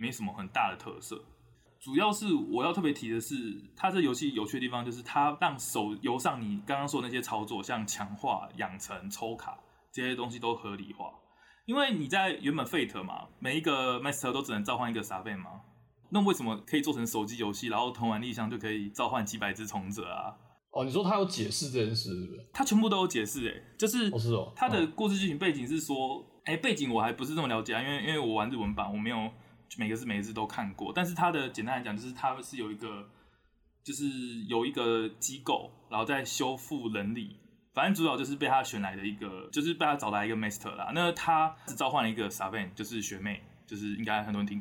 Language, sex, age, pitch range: Chinese, male, 20-39, 105-150 Hz